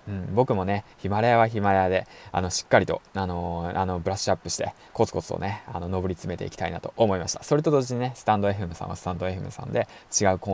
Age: 20-39